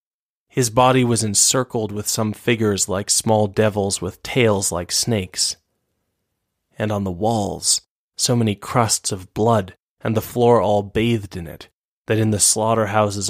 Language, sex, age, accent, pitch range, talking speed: English, male, 20-39, American, 100-115 Hz, 155 wpm